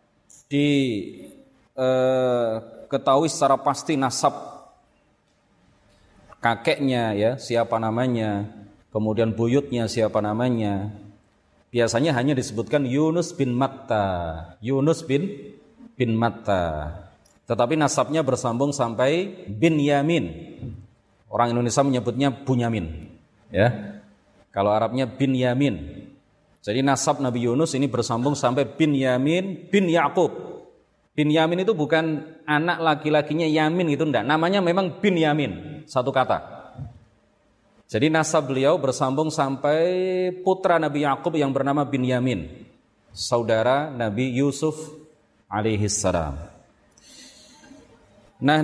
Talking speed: 100 wpm